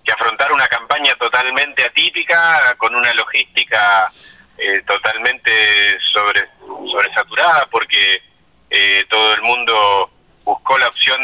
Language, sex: Spanish, male